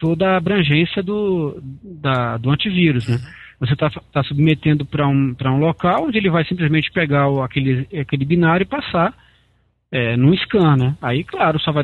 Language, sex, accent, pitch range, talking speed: Portuguese, male, Brazilian, 135-175 Hz, 180 wpm